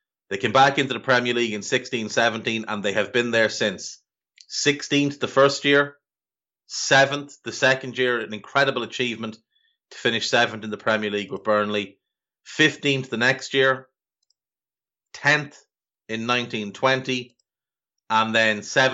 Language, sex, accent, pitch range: English, male, Irish, 105-130 Hz